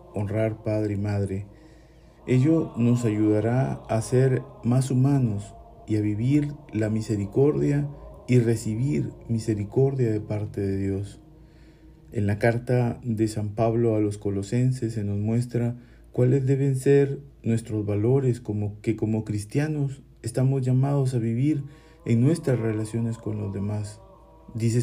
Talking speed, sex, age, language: 135 wpm, male, 50-69, Spanish